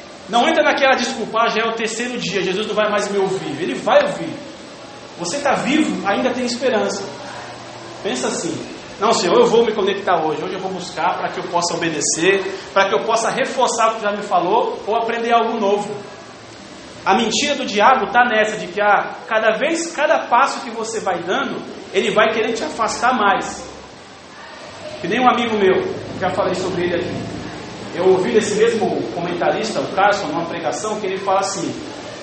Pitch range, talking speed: 175-225 Hz, 190 wpm